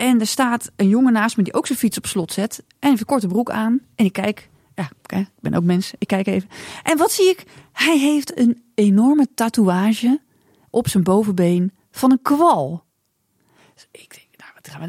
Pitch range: 195-255 Hz